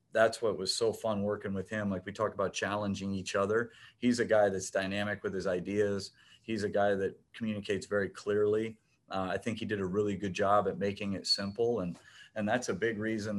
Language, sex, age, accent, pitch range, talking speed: English, male, 30-49, American, 100-115 Hz, 220 wpm